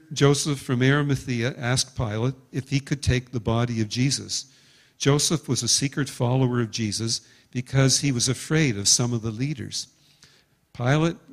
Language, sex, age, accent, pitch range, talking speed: English, male, 50-69, American, 125-145 Hz, 160 wpm